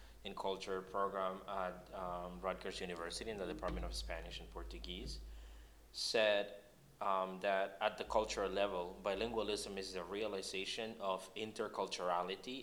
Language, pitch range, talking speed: English, 90-100 Hz, 130 wpm